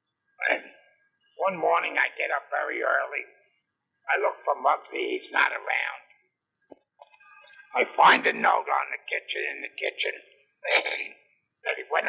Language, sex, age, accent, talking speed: English, male, 60-79, American, 135 wpm